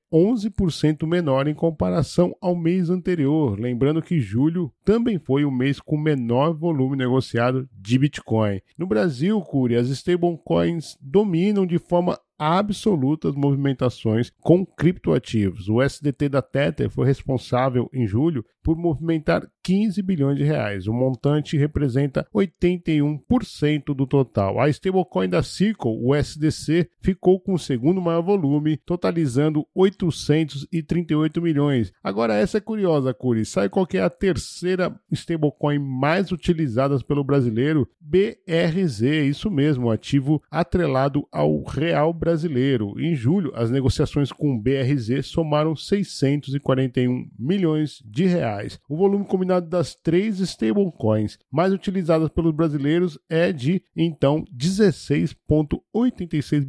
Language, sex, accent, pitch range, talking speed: Portuguese, male, Brazilian, 130-175 Hz, 125 wpm